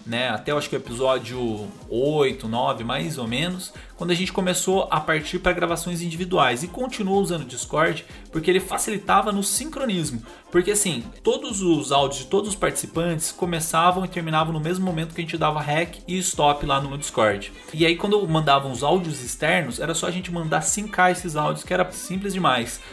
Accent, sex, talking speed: Brazilian, male, 195 wpm